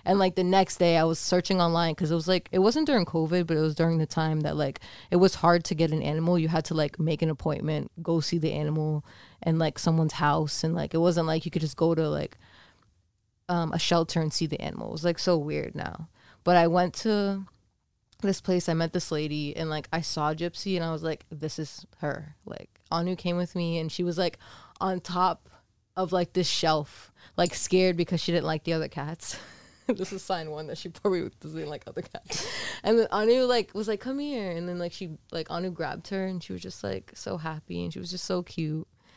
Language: English